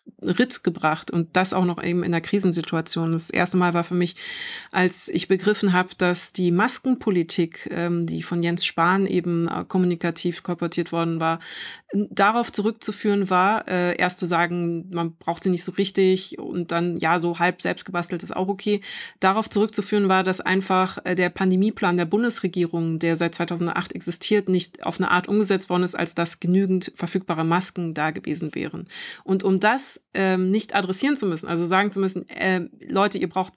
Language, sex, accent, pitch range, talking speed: German, female, German, 175-200 Hz, 180 wpm